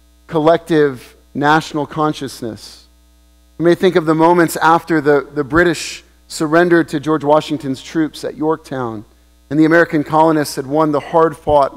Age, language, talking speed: 40-59, English, 150 wpm